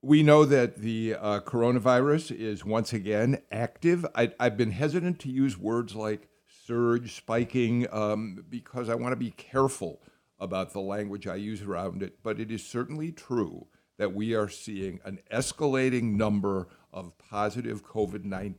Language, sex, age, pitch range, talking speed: English, male, 50-69, 105-135 Hz, 155 wpm